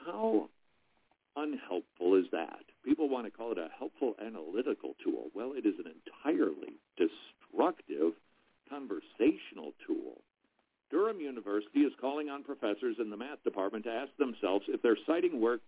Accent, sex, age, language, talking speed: American, male, 60-79, English, 145 wpm